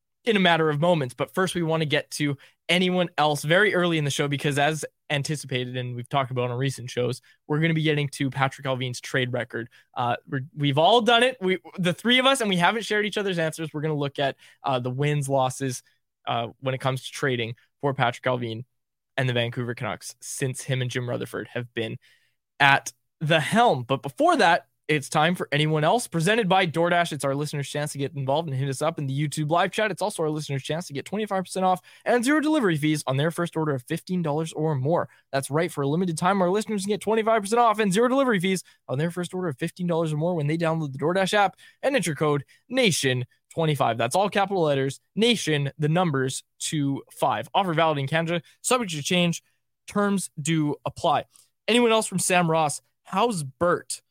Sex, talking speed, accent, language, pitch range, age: male, 220 wpm, American, English, 135-180 Hz, 20-39